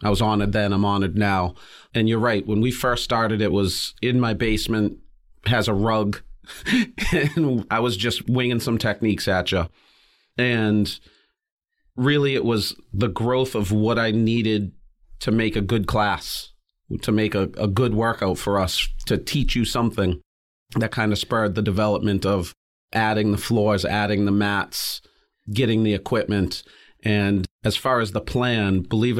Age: 40-59